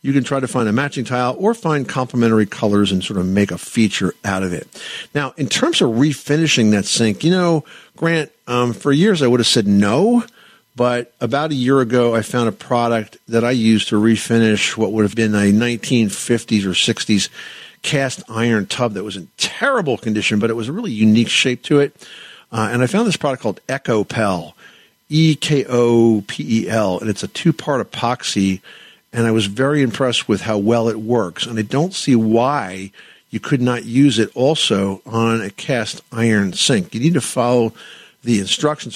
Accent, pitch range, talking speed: American, 105-130 Hz, 190 wpm